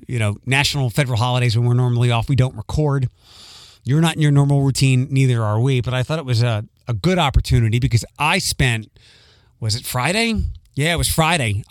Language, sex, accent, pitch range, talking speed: English, male, American, 115-150 Hz, 205 wpm